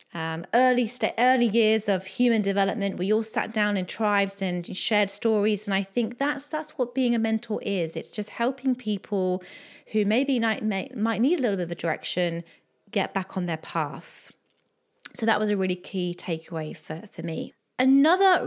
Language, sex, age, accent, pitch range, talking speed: English, female, 30-49, British, 190-240 Hz, 190 wpm